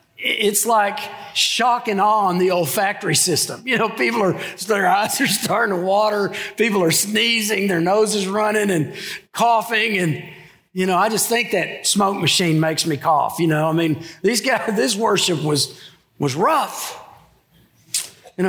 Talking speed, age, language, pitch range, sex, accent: 170 wpm, 50-69, English, 150-200 Hz, male, American